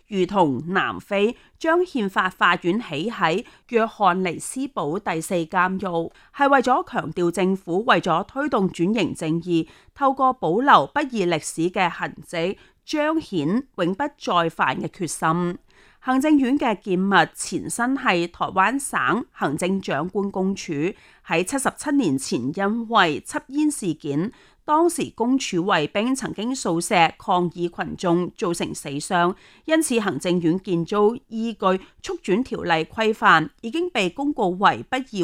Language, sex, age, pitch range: Chinese, female, 30-49, 170-255 Hz